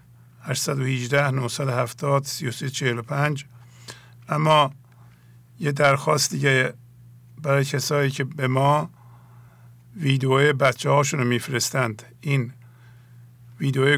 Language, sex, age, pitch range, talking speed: English, male, 50-69, 120-145 Hz, 70 wpm